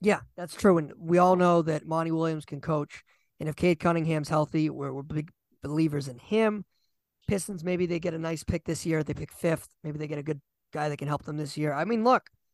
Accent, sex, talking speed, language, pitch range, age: American, male, 240 wpm, English, 155-200 Hz, 20-39